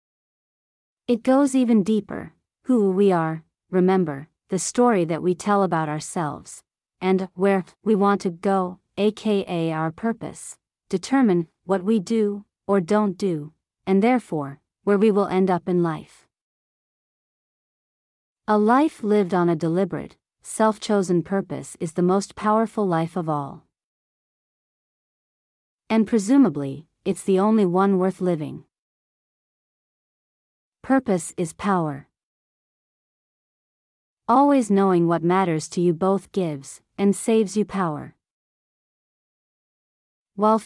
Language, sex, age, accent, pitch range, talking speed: English, female, 40-59, American, 170-210 Hz, 115 wpm